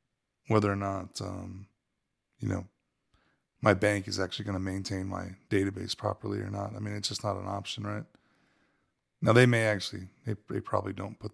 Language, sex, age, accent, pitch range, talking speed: English, male, 20-39, American, 95-115 Hz, 185 wpm